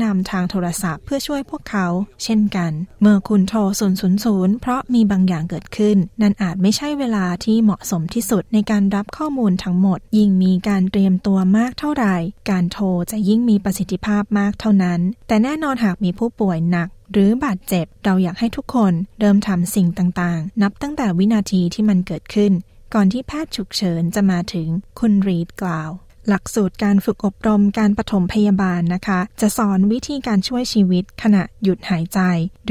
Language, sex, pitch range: Thai, female, 185-220 Hz